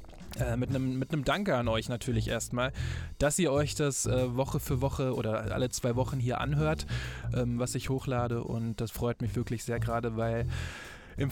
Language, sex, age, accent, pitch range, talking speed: German, male, 20-39, German, 115-130 Hz, 190 wpm